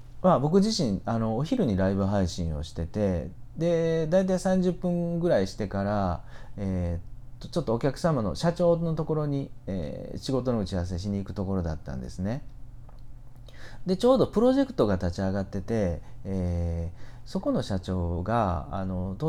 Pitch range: 95-130 Hz